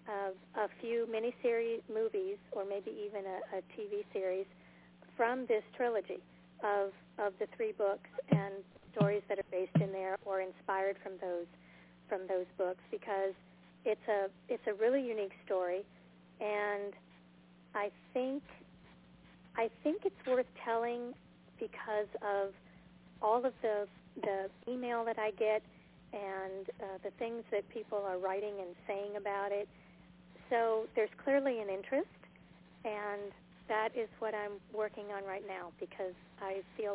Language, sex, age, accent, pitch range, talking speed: English, female, 40-59, American, 185-215 Hz, 145 wpm